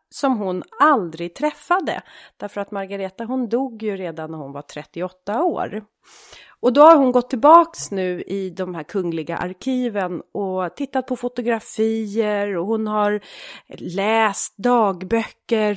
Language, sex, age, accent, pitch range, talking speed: Swedish, female, 30-49, native, 180-230 Hz, 140 wpm